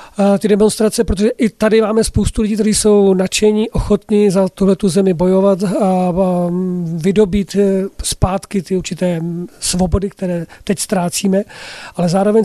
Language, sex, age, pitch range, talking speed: Czech, male, 40-59, 190-230 Hz, 135 wpm